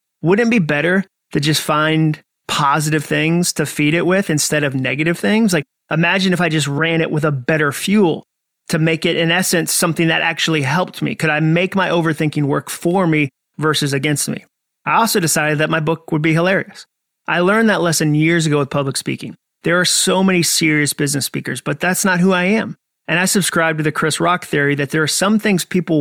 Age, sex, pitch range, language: 30-49, male, 150-185 Hz, English